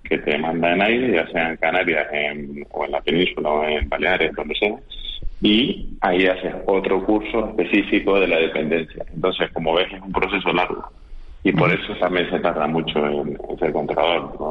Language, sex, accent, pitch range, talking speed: Spanish, male, Spanish, 75-85 Hz, 190 wpm